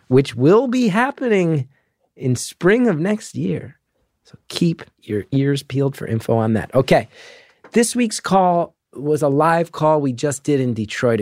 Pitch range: 110-150 Hz